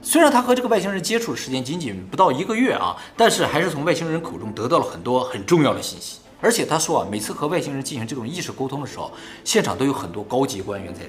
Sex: male